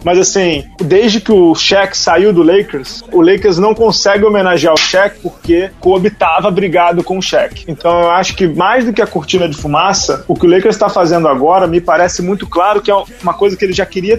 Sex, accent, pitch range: male, Brazilian, 170-220 Hz